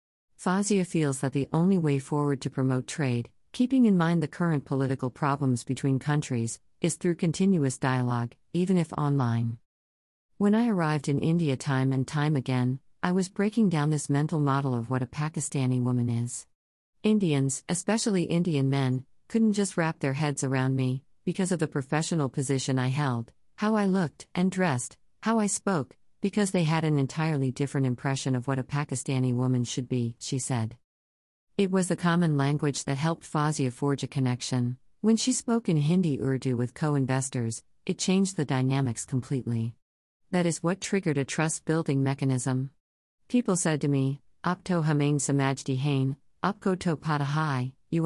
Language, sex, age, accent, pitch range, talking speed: English, female, 50-69, American, 130-170 Hz, 155 wpm